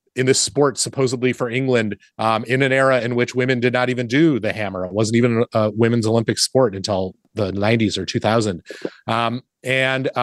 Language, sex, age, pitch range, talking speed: English, male, 30-49, 105-135 Hz, 195 wpm